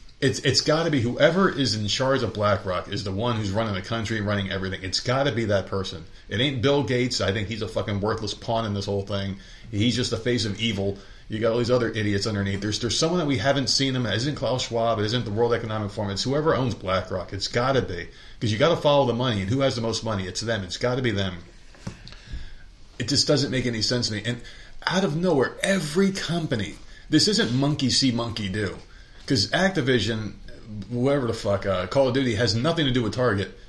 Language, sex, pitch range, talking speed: English, male, 100-135 Hz, 240 wpm